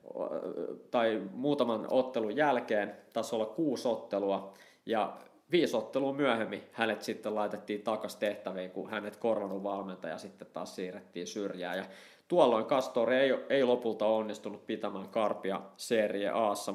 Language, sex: Finnish, male